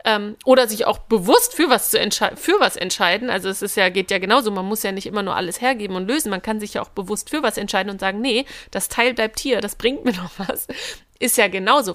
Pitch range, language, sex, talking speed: 205-265 Hz, German, female, 260 wpm